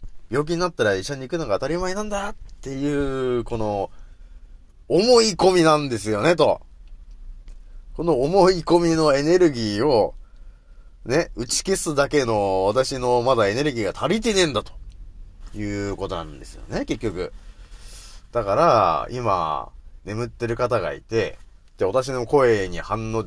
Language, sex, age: Japanese, male, 30-49